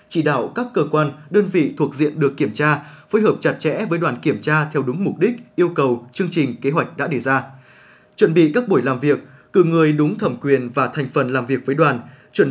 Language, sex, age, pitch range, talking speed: Vietnamese, male, 20-39, 140-180 Hz, 250 wpm